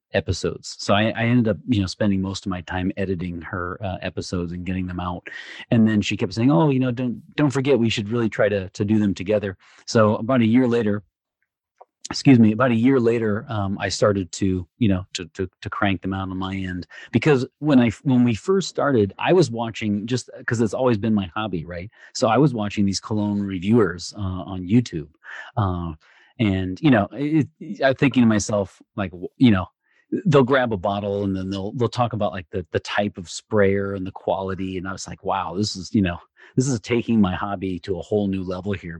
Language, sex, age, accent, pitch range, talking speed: English, male, 30-49, American, 95-120 Hz, 225 wpm